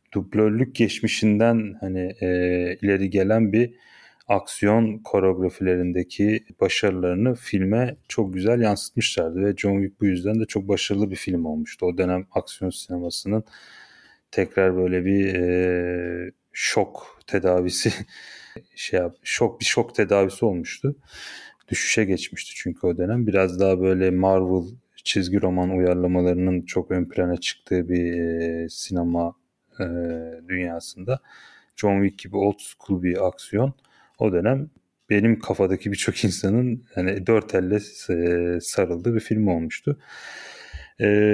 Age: 30-49